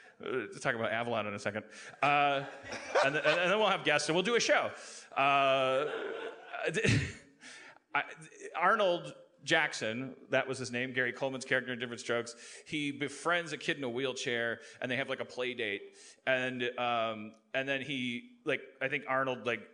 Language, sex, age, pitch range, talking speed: English, male, 30-49, 115-155 Hz, 170 wpm